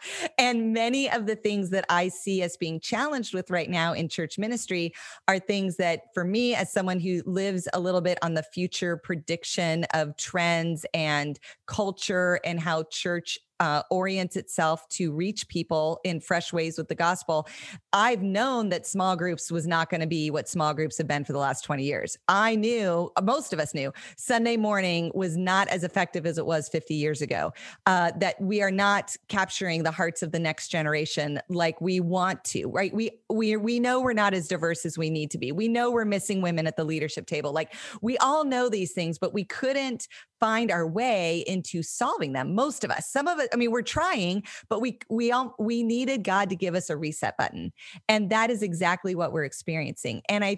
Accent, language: American, English